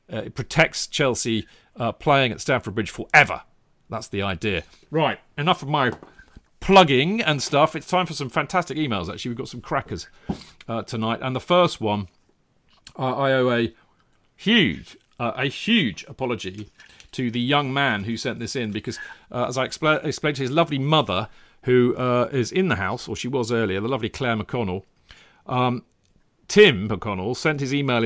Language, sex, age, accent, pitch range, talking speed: English, male, 40-59, British, 115-160 Hz, 170 wpm